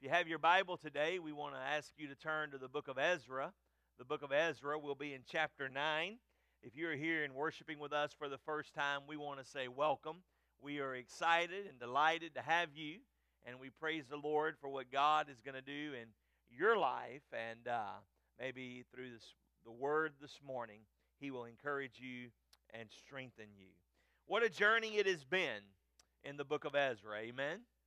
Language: English